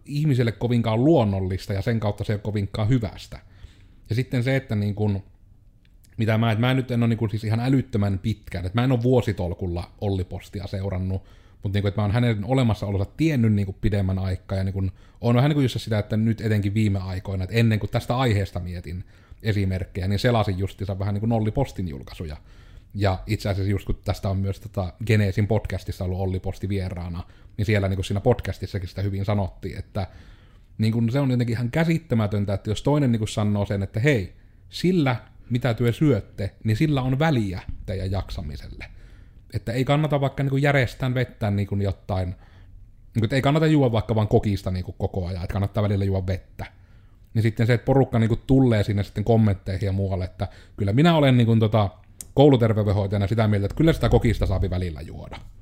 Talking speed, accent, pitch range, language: 185 wpm, native, 95-115 Hz, Finnish